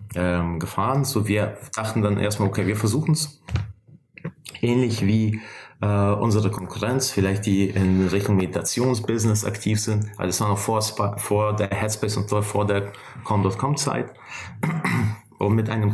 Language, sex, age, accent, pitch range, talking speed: German, male, 30-49, German, 100-125 Hz, 130 wpm